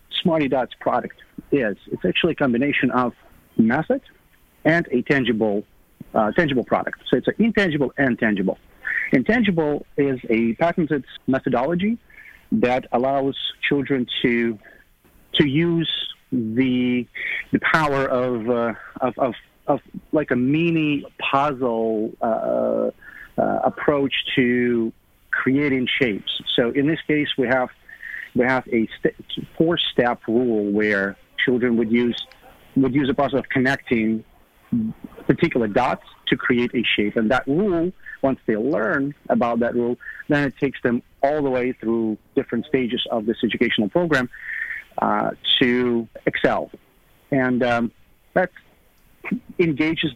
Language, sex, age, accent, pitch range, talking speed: English, male, 40-59, American, 120-145 Hz, 130 wpm